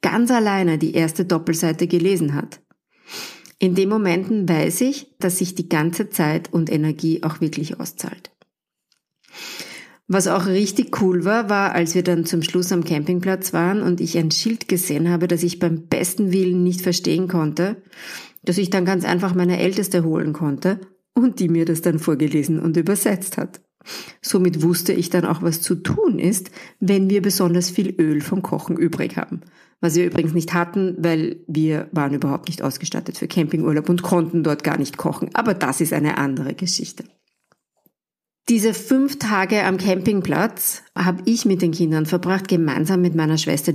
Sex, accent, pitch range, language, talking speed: female, German, 165-195 Hz, English, 175 wpm